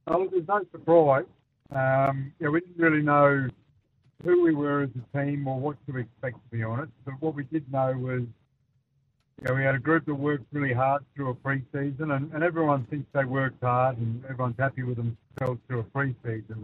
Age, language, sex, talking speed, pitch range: 60-79, English, male, 205 wpm, 130-145 Hz